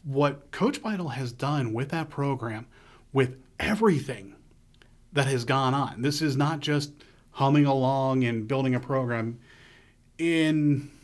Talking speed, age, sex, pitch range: 135 wpm, 30-49, male, 125-155 Hz